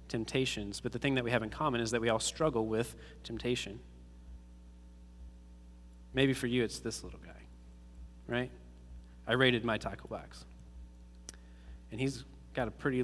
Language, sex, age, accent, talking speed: English, male, 20-39, American, 155 wpm